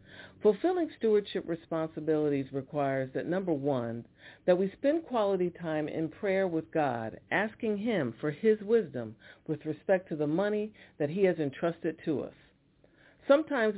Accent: American